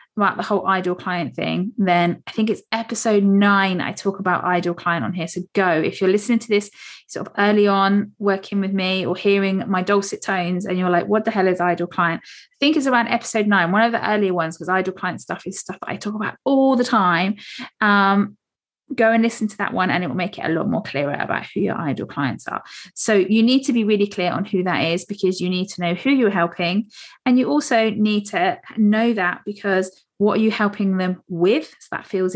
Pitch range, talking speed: 185-225 Hz, 235 wpm